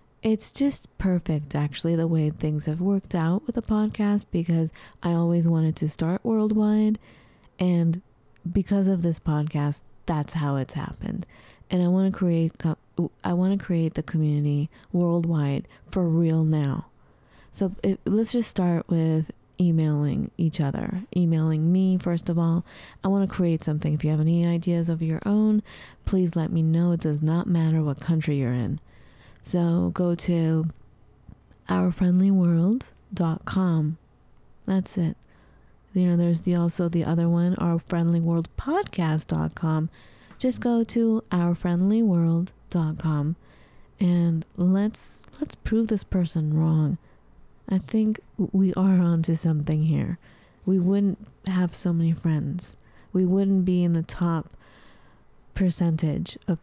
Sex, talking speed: female, 135 wpm